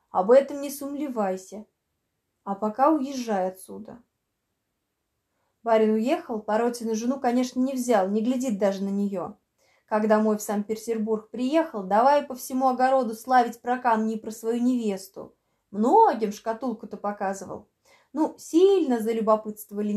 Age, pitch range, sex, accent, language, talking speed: 20-39, 210-275 Hz, female, native, Russian, 125 wpm